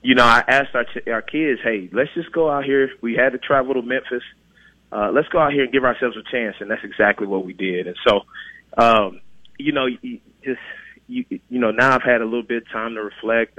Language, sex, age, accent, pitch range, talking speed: English, male, 30-49, American, 100-130 Hz, 250 wpm